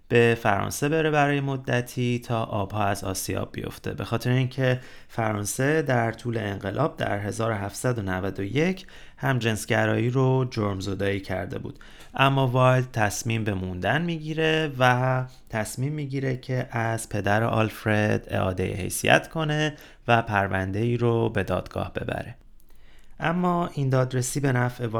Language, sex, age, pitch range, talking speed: Persian, male, 30-49, 105-135 Hz, 130 wpm